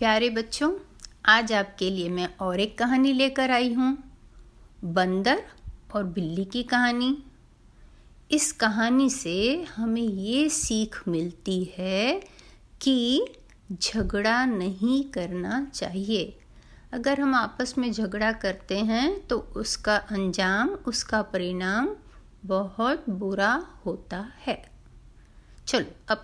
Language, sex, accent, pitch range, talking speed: Hindi, female, native, 200-275 Hz, 110 wpm